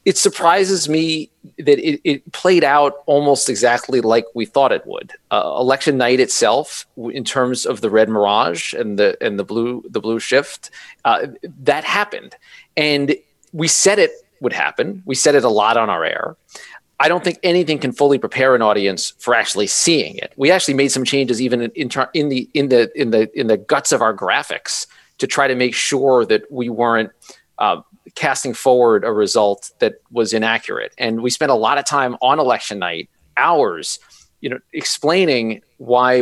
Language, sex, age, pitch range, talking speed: English, male, 40-59, 115-155 Hz, 190 wpm